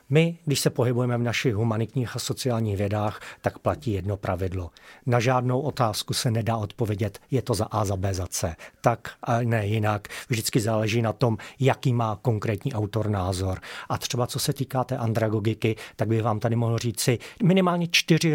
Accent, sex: native, male